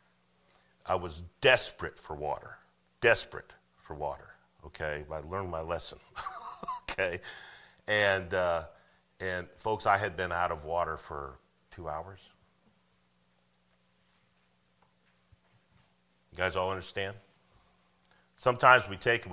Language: English